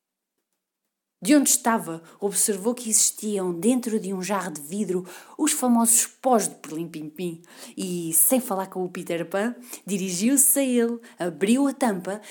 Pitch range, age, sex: 180-230 Hz, 20-39, female